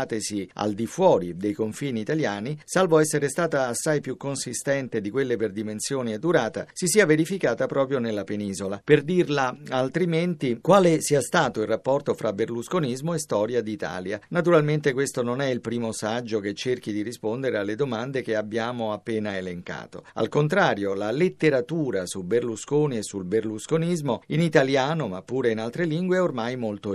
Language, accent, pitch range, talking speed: Italian, native, 110-155 Hz, 165 wpm